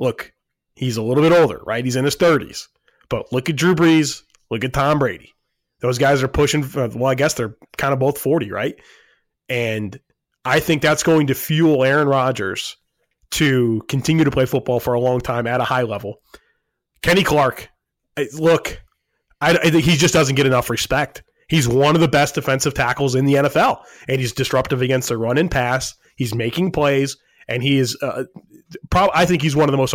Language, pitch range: English, 125-155 Hz